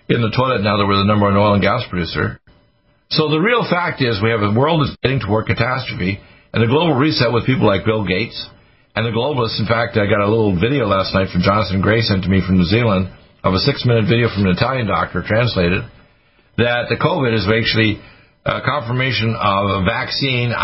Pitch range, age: 100-125 Hz, 50-69